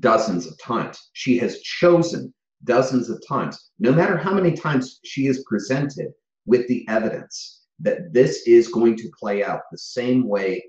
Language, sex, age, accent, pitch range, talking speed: English, male, 30-49, American, 110-170 Hz, 170 wpm